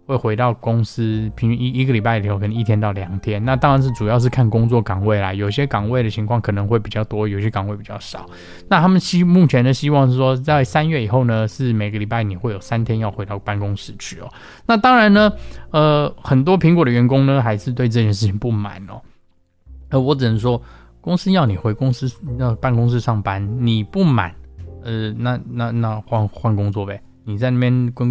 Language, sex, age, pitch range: Chinese, male, 20-39, 105-125 Hz